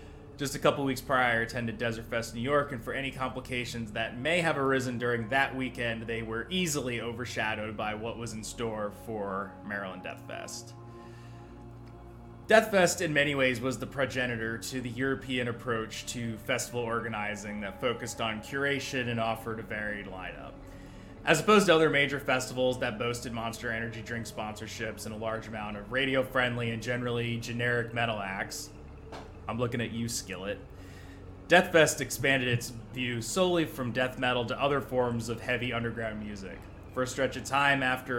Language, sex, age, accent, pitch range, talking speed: English, male, 20-39, American, 110-130 Hz, 170 wpm